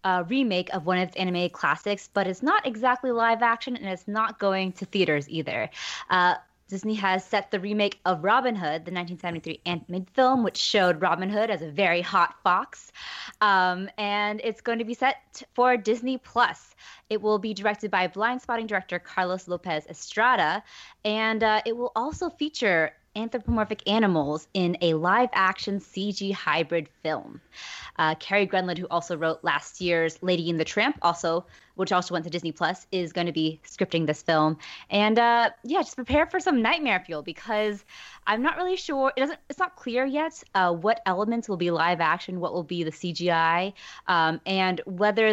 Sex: female